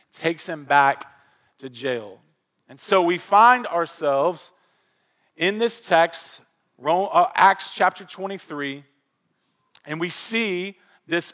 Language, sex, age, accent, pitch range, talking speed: English, male, 40-59, American, 155-190 Hz, 105 wpm